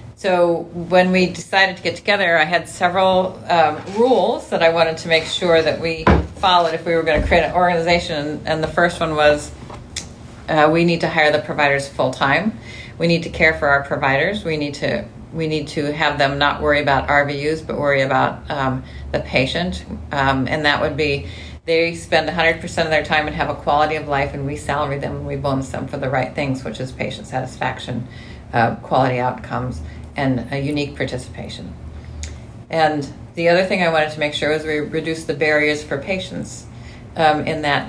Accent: American